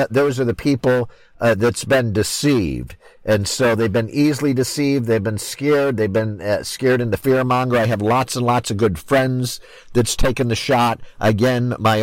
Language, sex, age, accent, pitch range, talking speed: English, male, 50-69, American, 105-130 Hz, 190 wpm